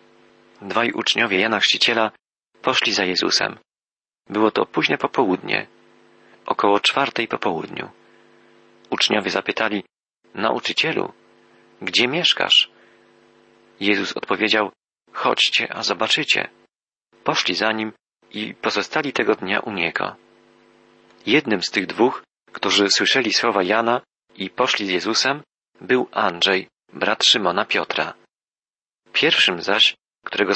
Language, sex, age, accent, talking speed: Polish, male, 40-59, native, 105 wpm